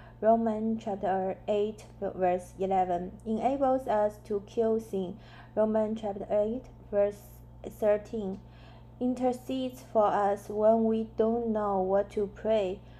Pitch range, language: 200-240 Hz, English